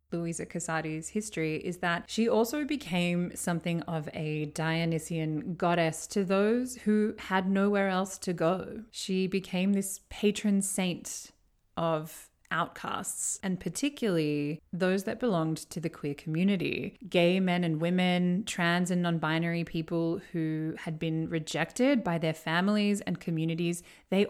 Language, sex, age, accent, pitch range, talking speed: English, female, 20-39, Australian, 160-195 Hz, 140 wpm